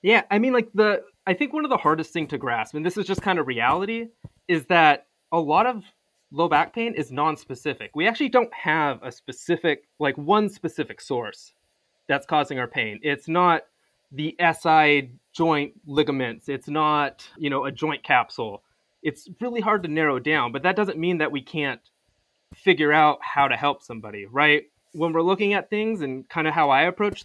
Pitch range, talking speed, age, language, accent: 140-185 Hz, 195 wpm, 20-39, English, American